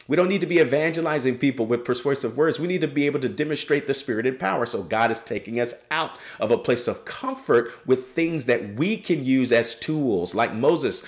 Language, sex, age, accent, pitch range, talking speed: English, male, 40-59, American, 115-170 Hz, 225 wpm